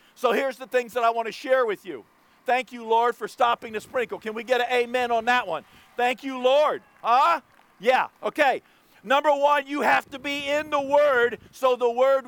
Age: 50-69